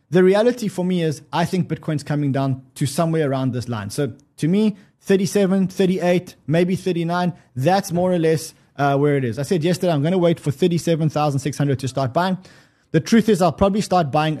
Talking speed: 200 wpm